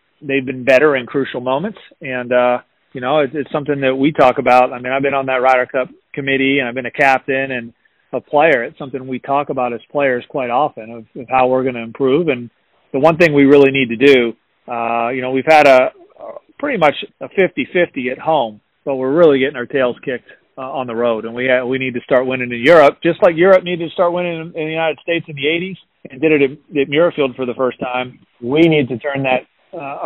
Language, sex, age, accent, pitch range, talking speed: English, male, 40-59, American, 125-145 Hz, 250 wpm